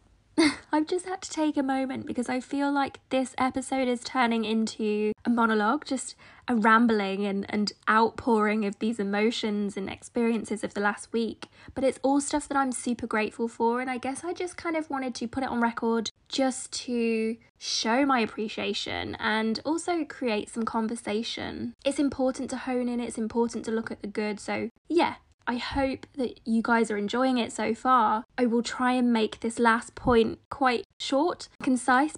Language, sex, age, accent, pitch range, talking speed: English, female, 20-39, British, 220-265 Hz, 185 wpm